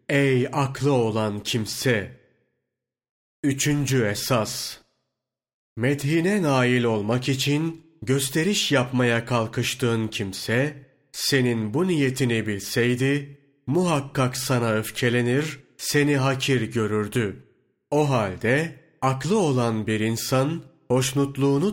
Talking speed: 85 wpm